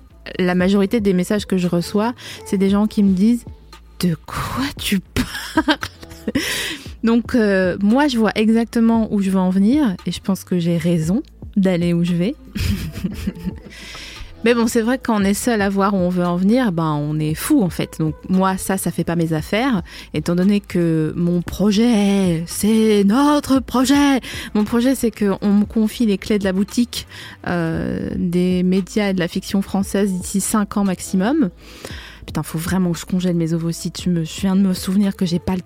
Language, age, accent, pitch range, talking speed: French, 20-39, French, 180-230 Hz, 200 wpm